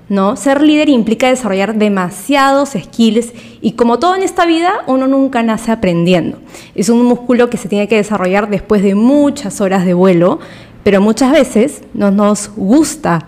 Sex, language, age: female, Spanish, 20-39